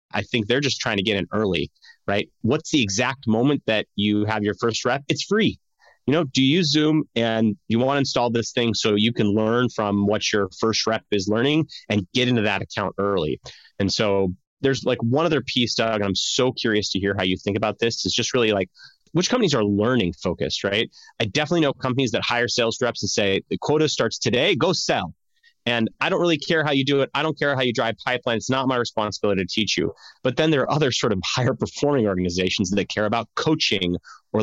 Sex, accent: male, American